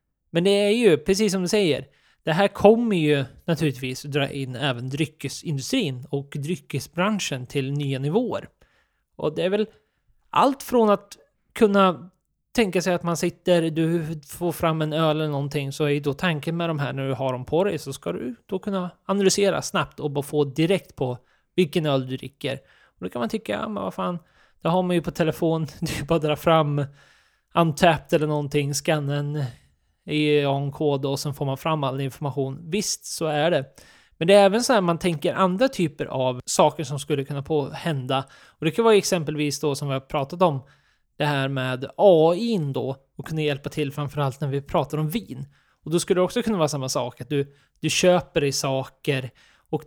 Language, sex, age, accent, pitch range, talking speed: Swedish, male, 20-39, native, 140-180 Hz, 200 wpm